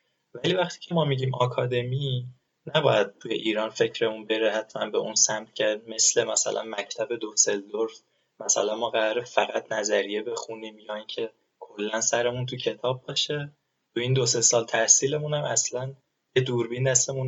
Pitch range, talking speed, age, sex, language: 115-135 Hz, 145 wpm, 20-39, male, Persian